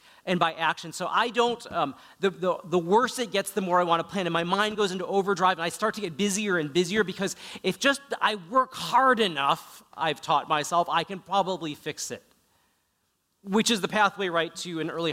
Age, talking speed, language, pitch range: 40-59, 215 wpm, English, 145-195 Hz